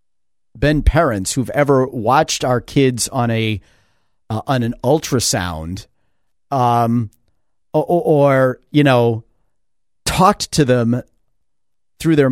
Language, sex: English, male